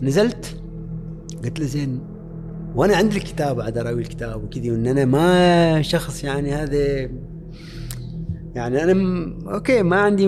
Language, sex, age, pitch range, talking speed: Arabic, male, 30-49, 135-185 Hz, 130 wpm